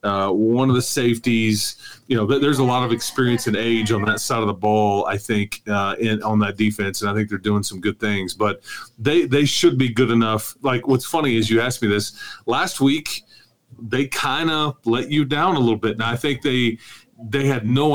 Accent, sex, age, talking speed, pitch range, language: American, male, 40-59, 225 wpm, 105-125 Hz, English